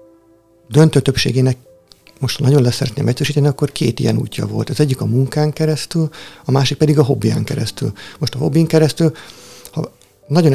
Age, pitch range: 50-69, 120-150 Hz